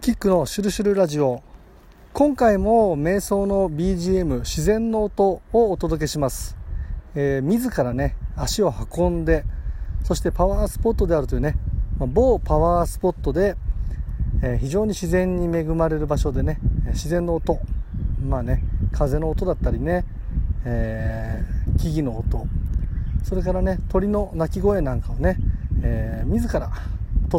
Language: Japanese